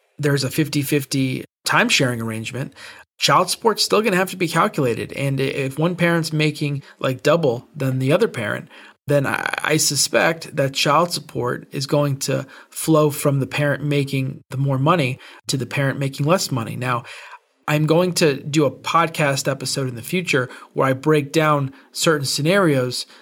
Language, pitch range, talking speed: English, 135-165 Hz, 170 wpm